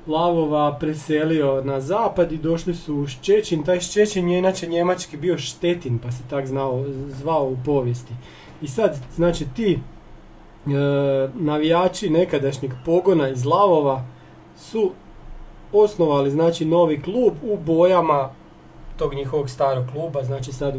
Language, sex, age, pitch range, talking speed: Croatian, male, 40-59, 140-180 Hz, 135 wpm